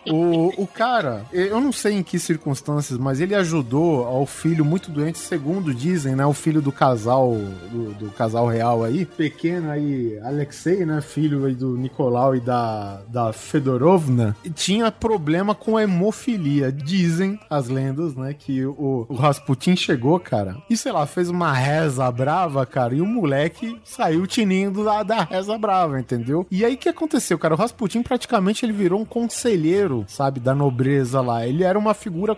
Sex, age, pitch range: male, 20-39, 135-190 Hz